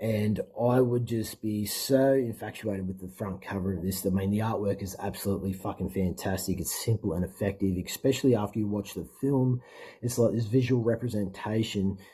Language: English